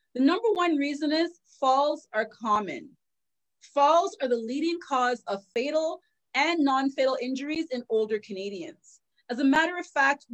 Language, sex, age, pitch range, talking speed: English, female, 30-49, 230-295 Hz, 150 wpm